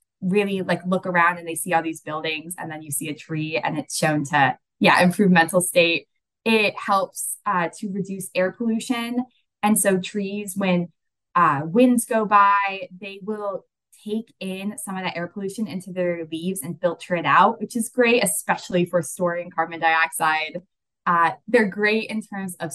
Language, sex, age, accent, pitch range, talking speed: English, female, 20-39, American, 170-205 Hz, 180 wpm